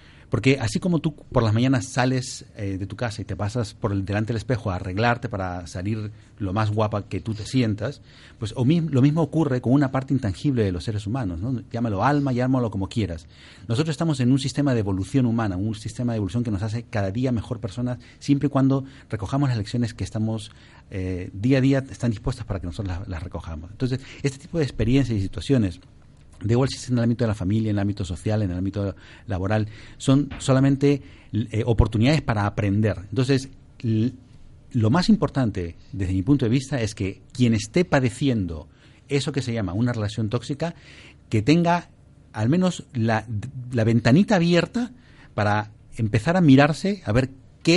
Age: 40-59